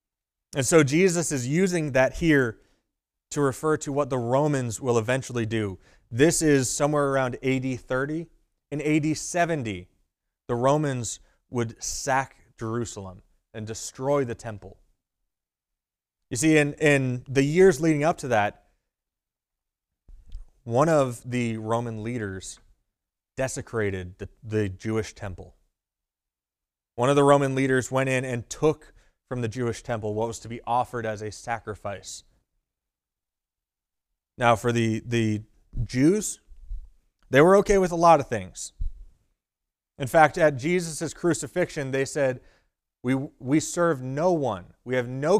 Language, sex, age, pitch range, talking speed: English, male, 30-49, 100-145 Hz, 135 wpm